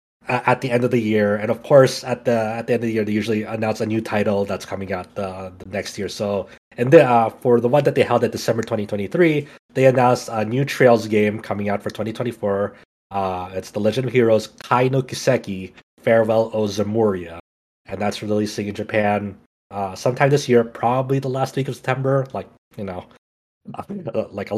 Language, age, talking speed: English, 30-49, 205 wpm